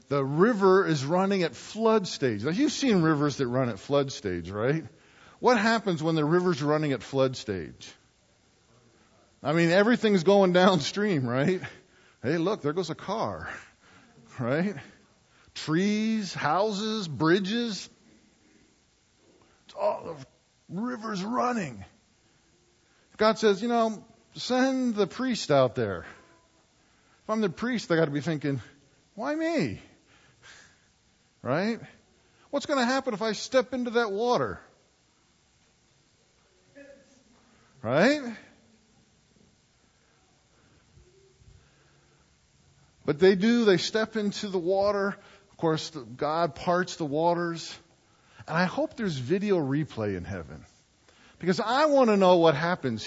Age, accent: 40-59, American